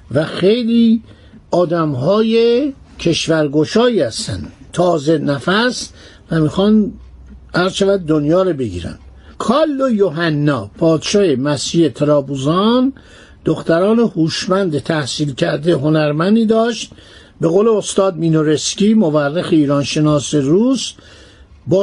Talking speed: 90 wpm